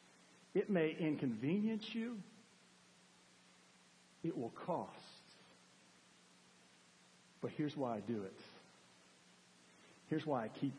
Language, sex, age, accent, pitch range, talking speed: English, male, 50-69, American, 155-210 Hz, 95 wpm